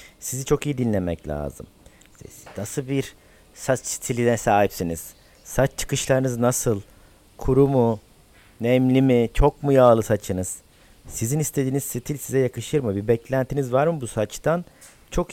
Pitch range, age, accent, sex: 100-135 Hz, 50-69, native, male